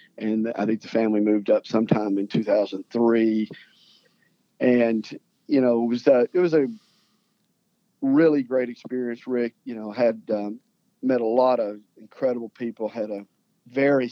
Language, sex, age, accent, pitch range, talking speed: English, male, 50-69, American, 110-135 Hz, 155 wpm